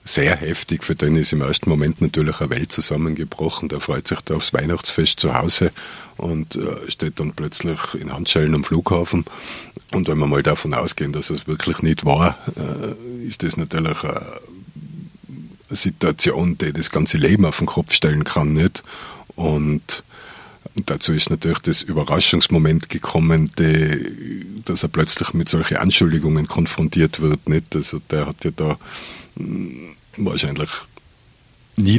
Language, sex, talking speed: German, male, 150 wpm